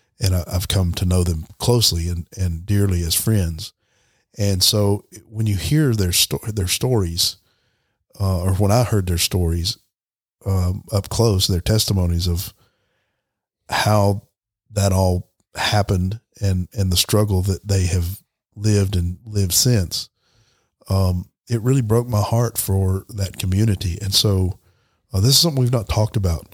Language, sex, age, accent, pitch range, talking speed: English, male, 40-59, American, 95-105 Hz, 155 wpm